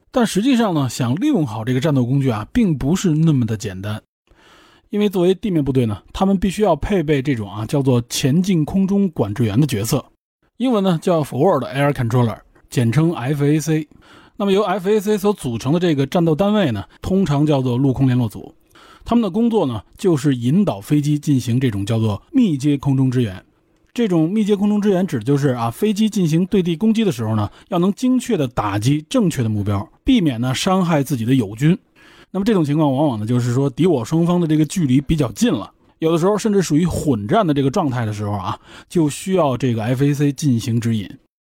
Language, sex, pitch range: Chinese, male, 125-185 Hz